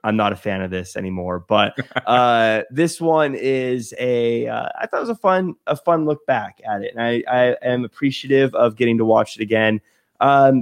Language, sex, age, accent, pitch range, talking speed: English, male, 20-39, American, 115-160 Hz, 210 wpm